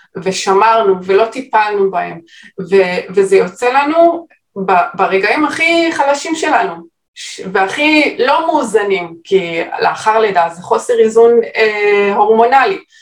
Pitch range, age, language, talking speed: 175-230 Hz, 20-39, Hebrew, 115 wpm